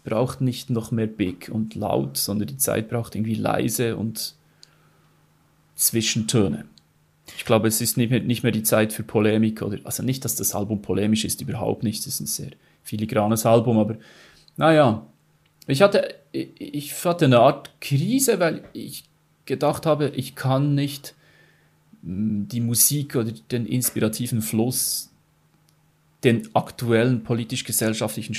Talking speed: 145 wpm